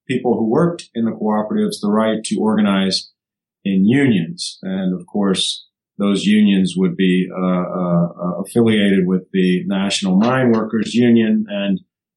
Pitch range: 95-150 Hz